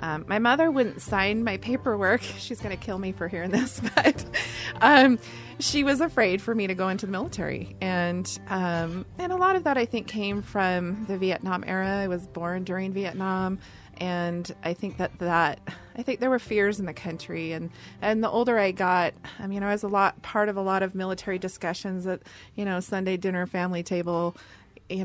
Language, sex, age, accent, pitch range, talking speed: English, female, 30-49, American, 170-205 Hz, 205 wpm